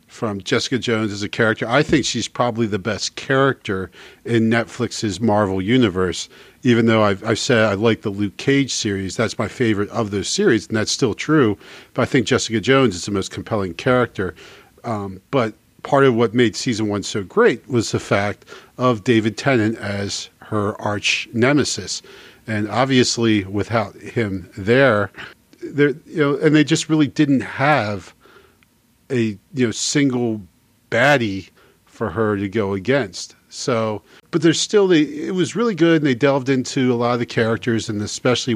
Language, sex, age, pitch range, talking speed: English, male, 40-59, 105-130 Hz, 175 wpm